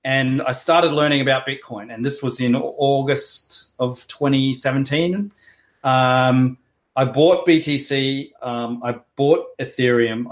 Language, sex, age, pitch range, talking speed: English, male, 30-49, 135-180 Hz, 120 wpm